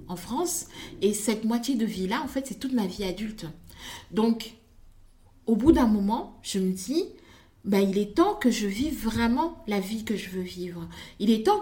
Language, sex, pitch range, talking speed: French, female, 195-265 Hz, 205 wpm